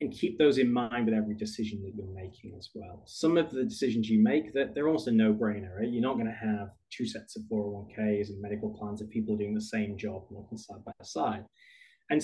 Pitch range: 110-175 Hz